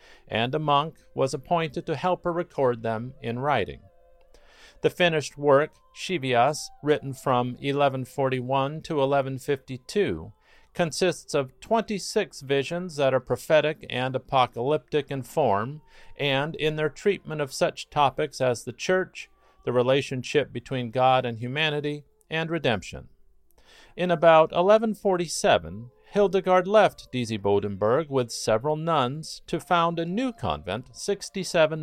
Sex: male